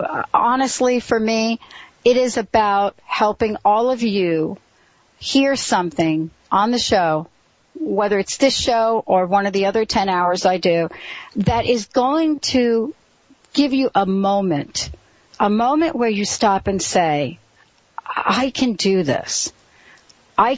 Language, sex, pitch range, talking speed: English, female, 180-230 Hz, 140 wpm